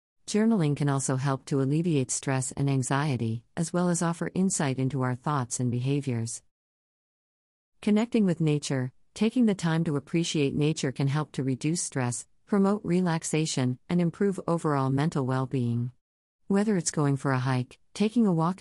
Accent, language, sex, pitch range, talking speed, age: American, English, female, 130-170 Hz, 160 wpm, 50-69